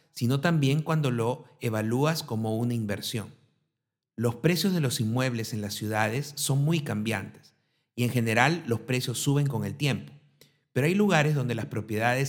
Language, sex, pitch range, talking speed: Spanish, male, 115-145 Hz, 165 wpm